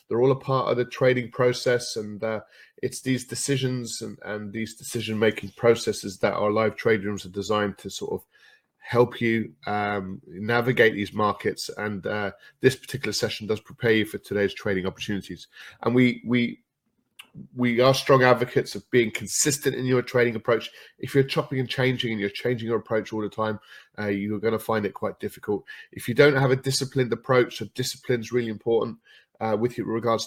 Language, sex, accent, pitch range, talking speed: English, male, British, 105-130 Hz, 195 wpm